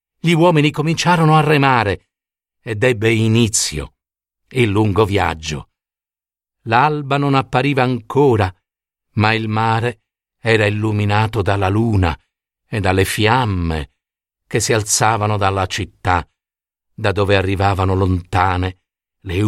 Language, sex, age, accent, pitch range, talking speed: Italian, male, 50-69, native, 95-115 Hz, 110 wpm